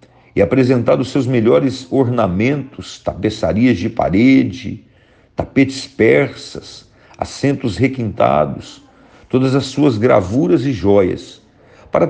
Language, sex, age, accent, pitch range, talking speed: Portuguese, male, 50-69, Brazilian, 115-140 Hz, 100 wpm